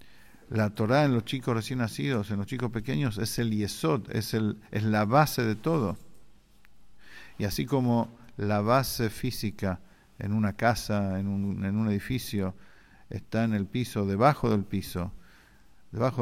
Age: 50-69